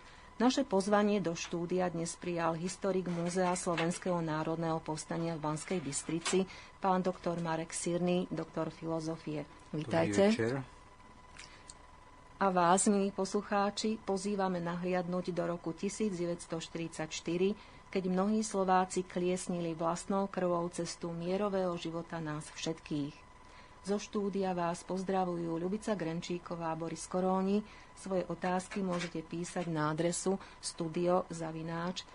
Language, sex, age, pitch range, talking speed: Slovak, female, 40-59, 165-185 Hz, 105 wpm